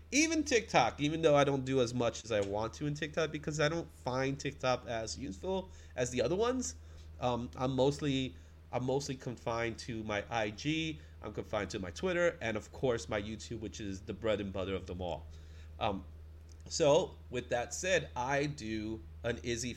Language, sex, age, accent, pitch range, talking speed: English, male, 30-49, American, 95-130 Hz, 190 wpm